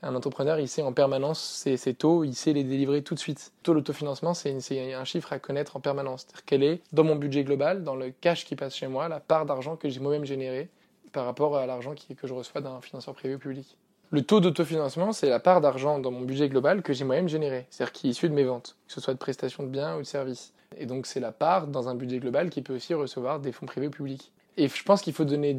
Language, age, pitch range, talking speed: French, 20-39, 135-160 Hz, 275 wpm